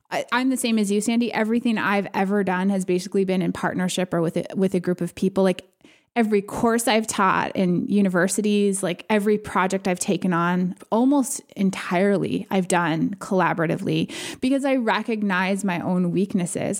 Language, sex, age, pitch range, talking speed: English, female, 20-39, 185-220 Hz, 170 wpm